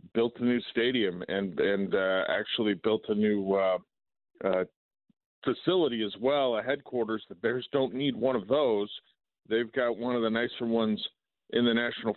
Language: English